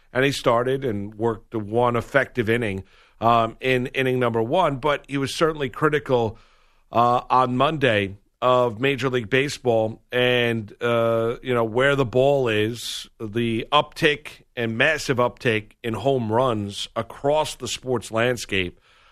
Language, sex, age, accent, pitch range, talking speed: English, male, 50-69, American, 115-140 Hz, 145 wpm